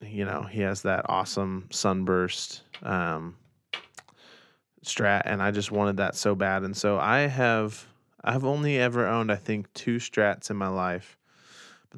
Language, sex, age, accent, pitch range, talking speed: English, male, 20-39, American, 95-115 Hz, 160 wpm